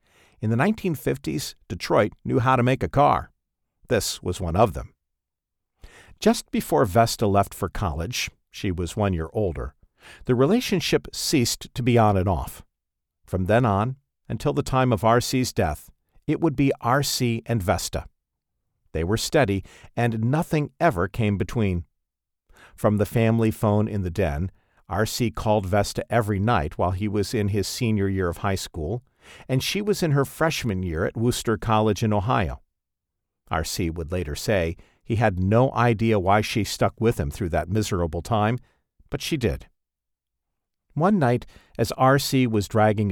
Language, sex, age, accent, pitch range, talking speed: English, male, 50-69, American, 90-120 Hz, 165 wpm